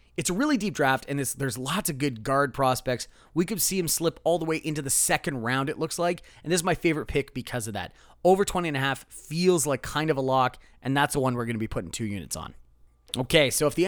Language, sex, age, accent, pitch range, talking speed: English, male, 30-49, American, 125-170 Hz, 260 wpm